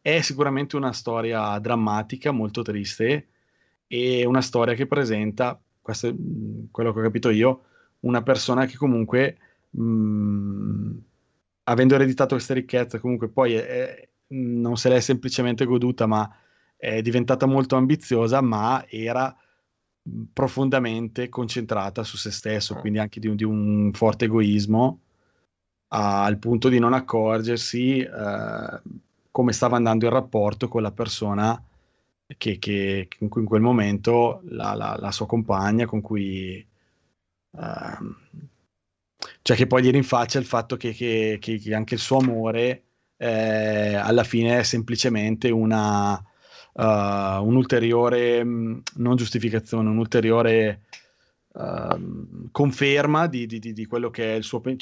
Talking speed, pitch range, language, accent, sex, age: 125 wpm, 110-125 Hz, Italian, native, male, 20-39